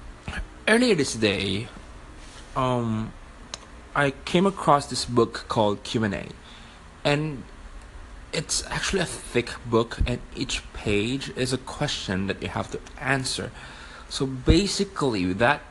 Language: English